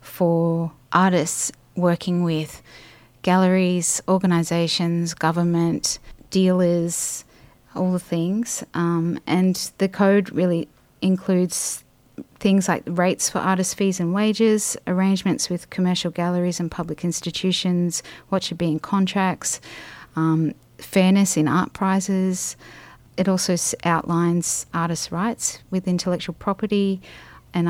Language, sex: English, female